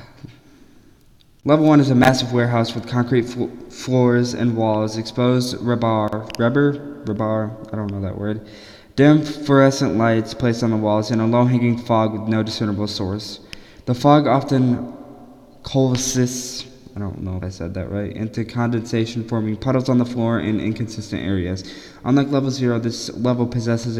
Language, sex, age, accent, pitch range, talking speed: English, male, 20-39, American, 110-125 Hz, 160 wpm